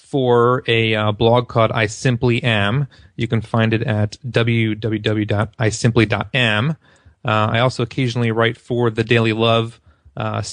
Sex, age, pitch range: male, 30-49, 110-130 Hz